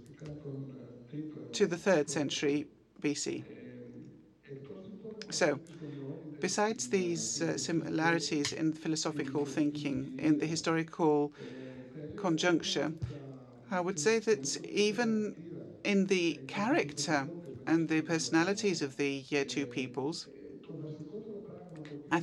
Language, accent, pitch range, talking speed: Greek, British, 145-180 Hz, 90 wpm